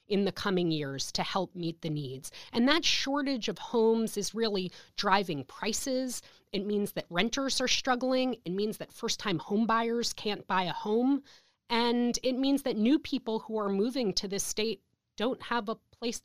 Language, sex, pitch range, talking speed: English, female, 180-230 Hz, 185 wpm